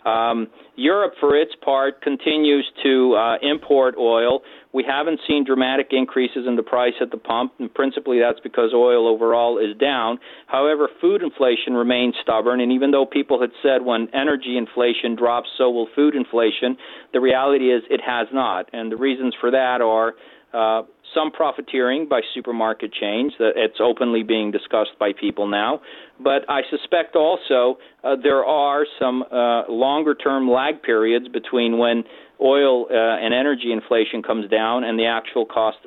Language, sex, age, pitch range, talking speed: English, male, 40-59, 115-135 Hz, 165 wpm